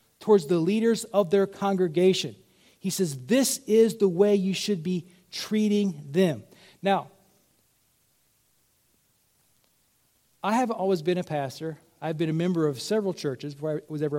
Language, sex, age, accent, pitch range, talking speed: English, male, 40-59, American, 180-255 Hz, 150 wpm